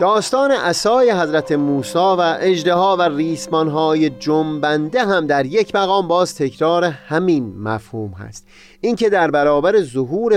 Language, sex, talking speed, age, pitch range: Persian, male, 125 wpm, 30-49, 125-190 Hz